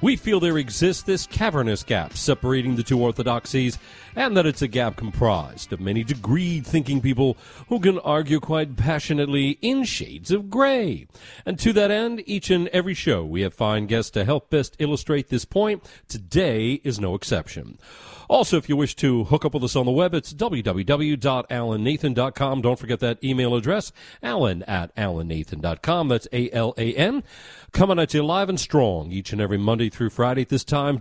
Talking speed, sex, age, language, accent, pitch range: 180 wpm, male, 40-59, English, American, 110-170 Hz